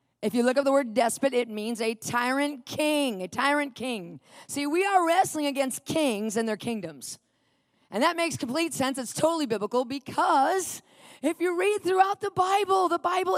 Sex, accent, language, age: female, American, English, 40-59